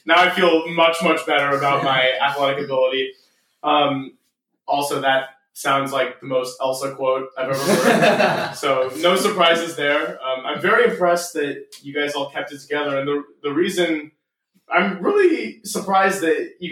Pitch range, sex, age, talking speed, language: 140-165 Hz, male, 20-39, 165 wpm, English